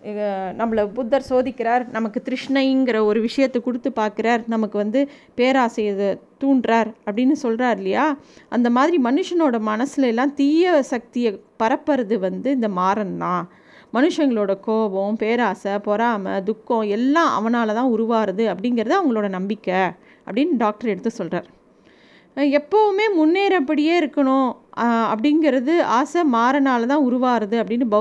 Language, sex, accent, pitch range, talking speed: Tamil, female, native, 220-280 Hz, 110 wpm